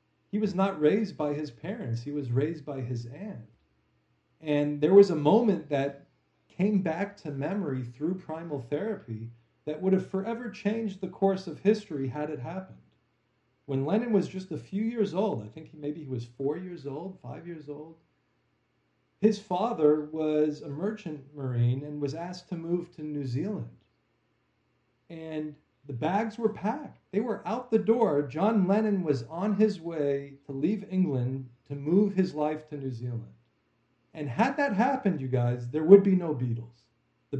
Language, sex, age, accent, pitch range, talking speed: English, male, 40-59, American, 135-195 Hz, 175 wpm